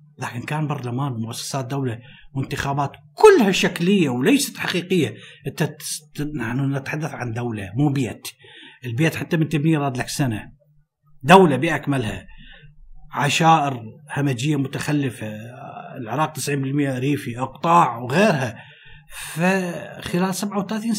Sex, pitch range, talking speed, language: male, 135-175 Hz, 105 wpm, Arabic